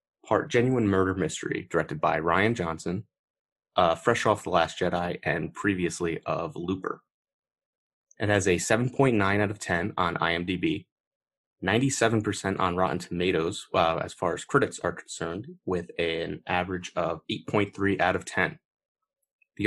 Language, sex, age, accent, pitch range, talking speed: English, male, 30-49, American, 90-110 Hz, 140 wpm